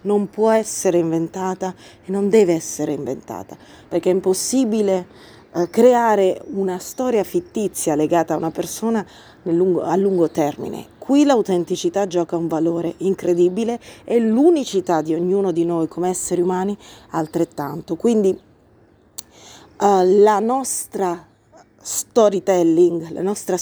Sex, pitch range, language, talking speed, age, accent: female, 170-220 Hz, Italian, 125 wpm, 30-49, native